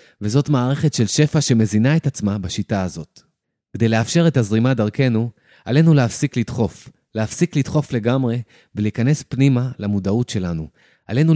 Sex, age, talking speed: male, 30-49, 130 wpm